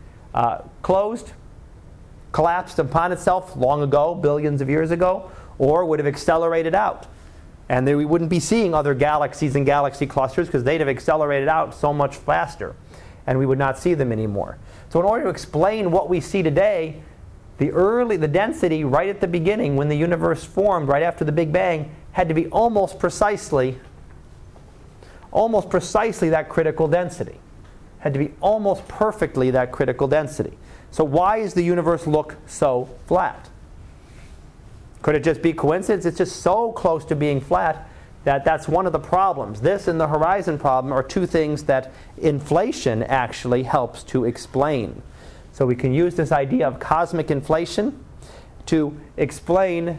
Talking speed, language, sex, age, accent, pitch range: 165 wpm, English, male, 40-59, American, 135-175 Hz